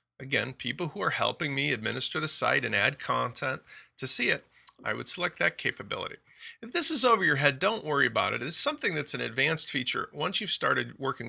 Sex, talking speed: male, 220 wpm